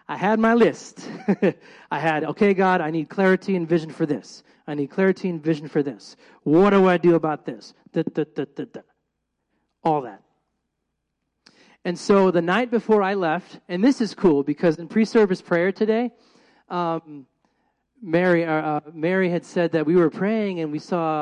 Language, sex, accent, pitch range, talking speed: English, male, American, 150-190 Hz, 180 wpm